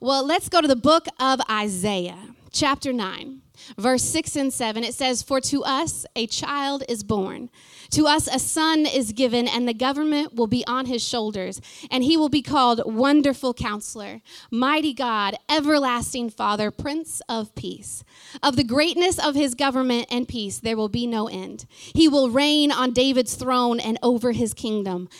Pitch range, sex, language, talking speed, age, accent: 235-290 Hz, female, English, 175 wpm, 30-49, American